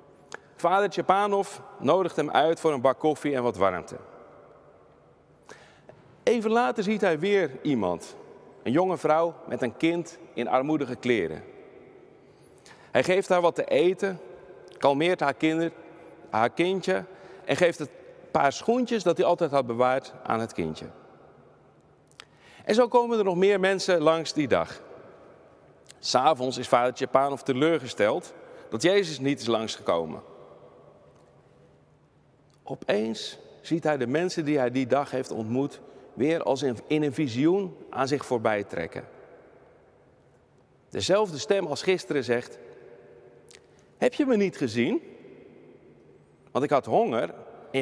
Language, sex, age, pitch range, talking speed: Dutch, male, 40-59, 140-215 Hz, 135 wpm